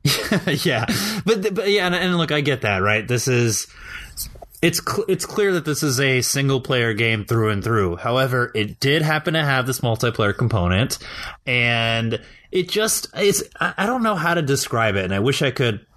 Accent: American